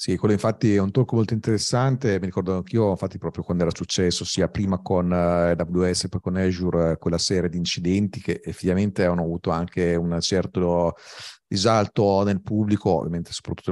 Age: 40-59